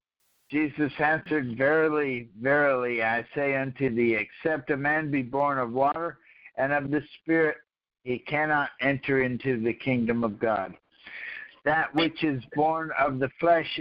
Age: 60-79